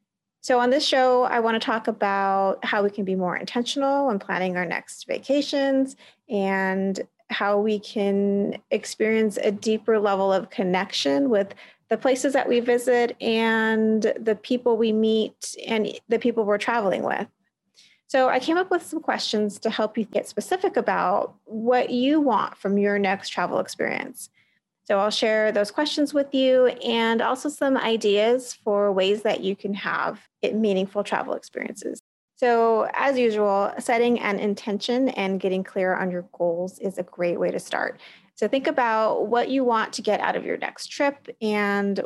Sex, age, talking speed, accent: female, 30-49, 170 wpm, American